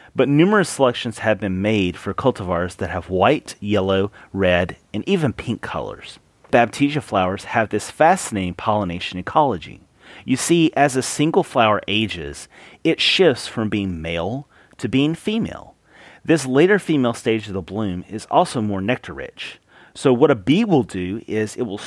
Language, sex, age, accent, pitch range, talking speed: English, male, 30-49, American, 95-125 Hz, 160 wpm